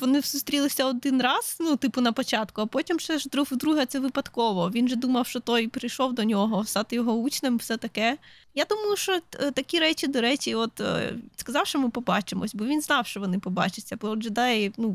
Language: Ukrainian